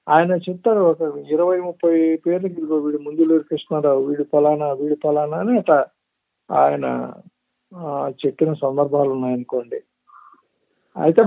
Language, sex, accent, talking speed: Telugu, male, native, 105 wpm